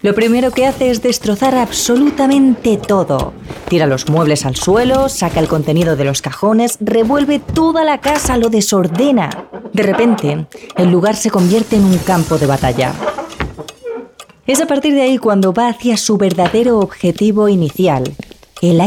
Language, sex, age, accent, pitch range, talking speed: Spanish, female, 30-49, Spanish, 170-240 Hz, 155 wpm